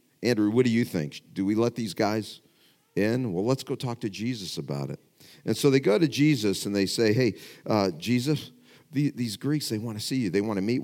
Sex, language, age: male, English, 50-69